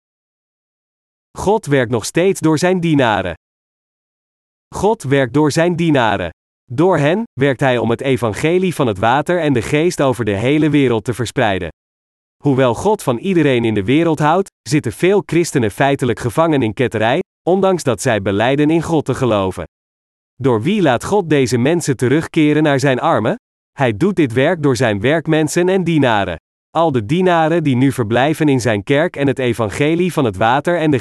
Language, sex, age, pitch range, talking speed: Dutch, male, 40-59, 120-160 Hz, 175 wpm